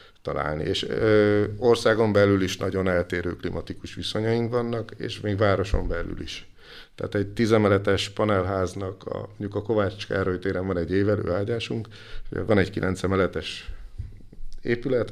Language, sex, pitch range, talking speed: Hungarian, male, 95-110 Hz, 130 wpm